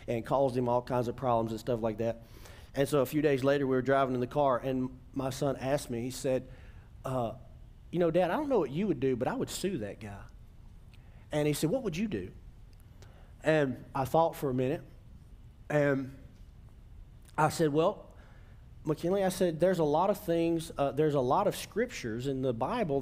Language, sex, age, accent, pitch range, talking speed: English, male, 40-59, American, 125-180 Hz, 210 wpm